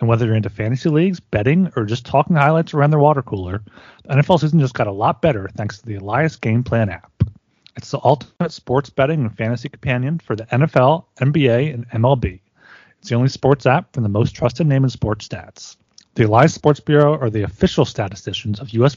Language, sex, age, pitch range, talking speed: English, male, 30-49, 110-145 Hz, 210 wpm